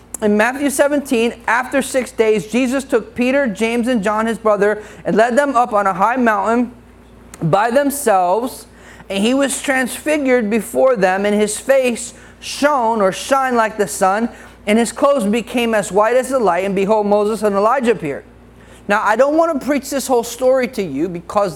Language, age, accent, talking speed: English, 30-49, American, 185 wpm